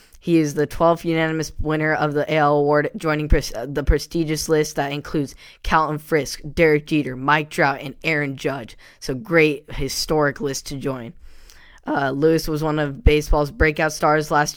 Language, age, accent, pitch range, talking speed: English, 10-29, American, 140-155 Hz, 170 wpm